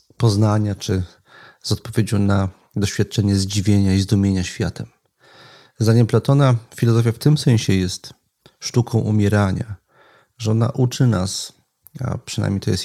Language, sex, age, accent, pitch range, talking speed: Polish, male, 40-59, native, 105-125 Hz, 125 wpm